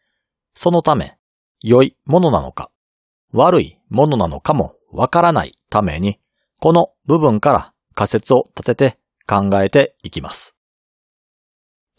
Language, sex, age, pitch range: Japanese, male, 40-59, 105-160 Hz